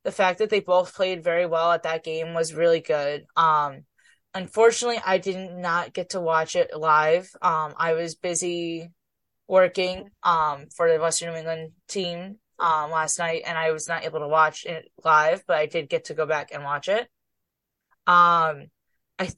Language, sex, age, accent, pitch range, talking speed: English, female, 10-29, American, 160-185 Hz, 185 wpm